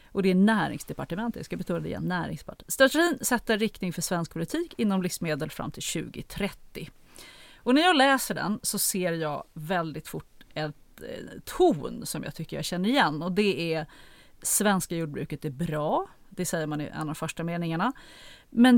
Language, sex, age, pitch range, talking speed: Swedish, female, 30-49, 165-230 Hz, 175 wpm